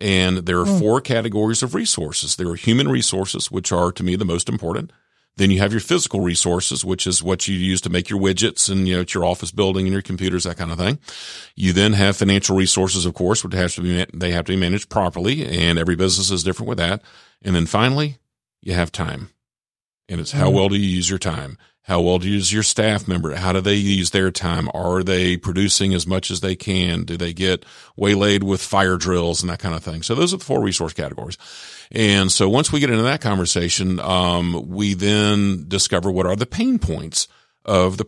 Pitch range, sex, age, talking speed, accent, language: 90-100 Hz, male, 40-59, 230 wpm, American, English